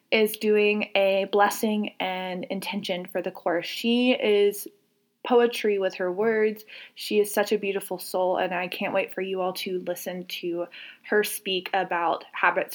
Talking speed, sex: 165 wpm, female